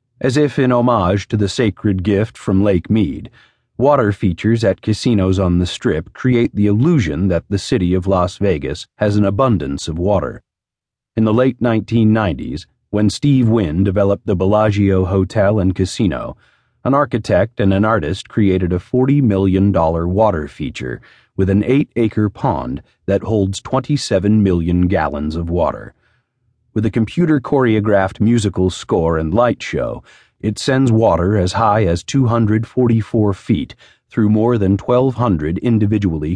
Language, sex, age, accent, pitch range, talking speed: English, male, 40-59, American, 95-120 Hz, 145 wpm